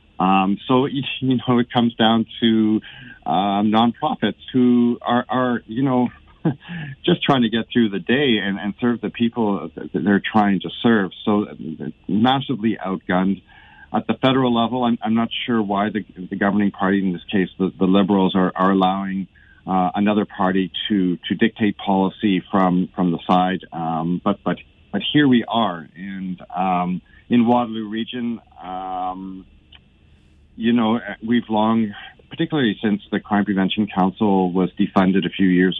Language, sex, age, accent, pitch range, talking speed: English, male, 50-69, American, 90-110 Hz, 165 wpm